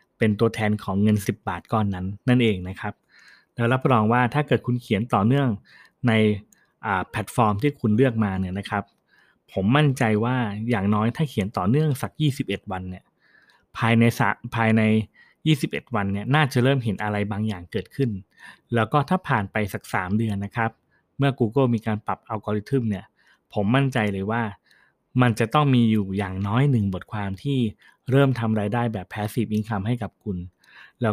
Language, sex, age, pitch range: Thai, male, 20-39, 105-125 Hz